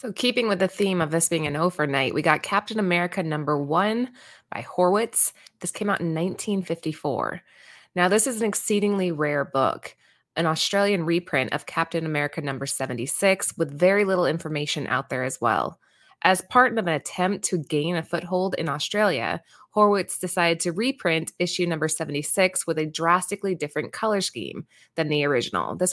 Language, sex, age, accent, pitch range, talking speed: English, female, 20-39, American, 160-200 Hz, 170 wpm